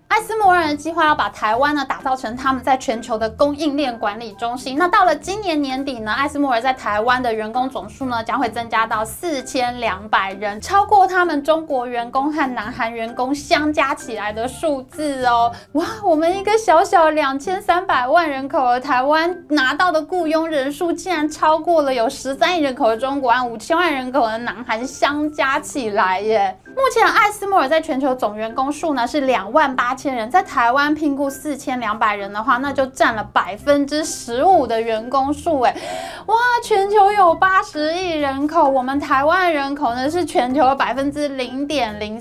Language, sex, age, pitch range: Chinese, female, 20-39, 245-335 Hz